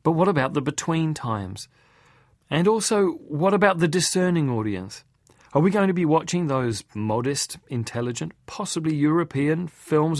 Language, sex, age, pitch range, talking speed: English, male, 40-59, 120-155 Hz, 145 wpm